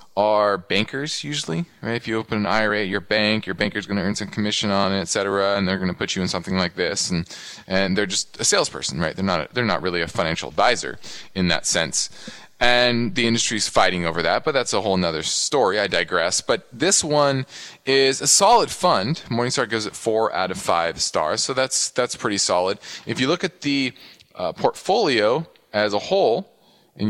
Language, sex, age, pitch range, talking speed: English, male, 20-39, 100-135 Hz, 210 wpm